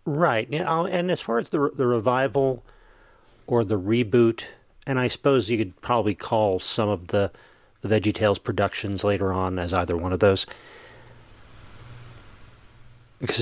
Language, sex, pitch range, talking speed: English, male, 105-135 Hz, 145 wpm